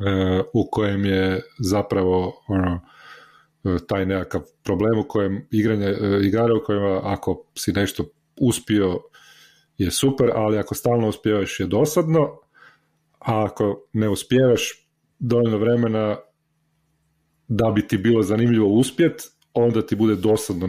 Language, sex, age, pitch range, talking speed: Croatian, male, 40-59, 100-125 Hz, 130 wpm